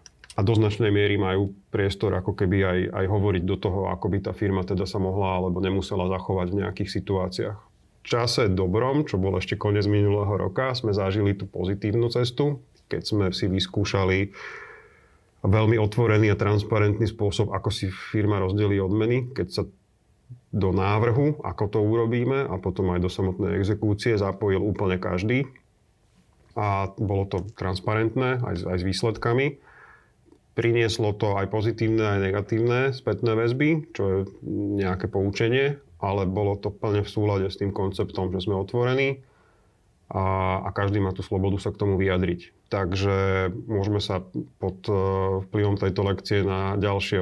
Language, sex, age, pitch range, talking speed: Slovak, male, 30-49, 95-110 Hz, 155 wpm